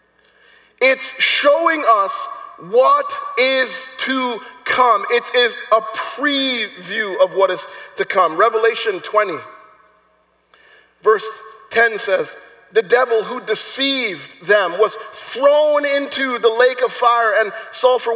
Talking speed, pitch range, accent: 115 wpm, 200-260 Hz, American